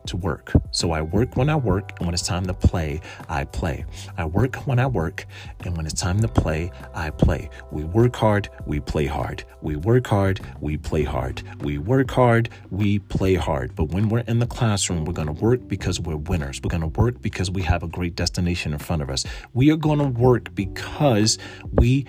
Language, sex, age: English, male, 40-59